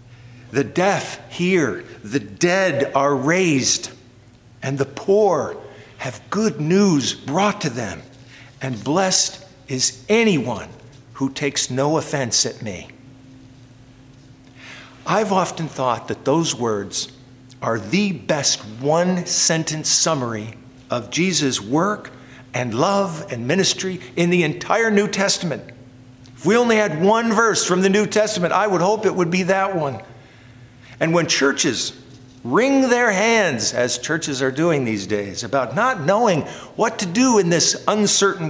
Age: 50-69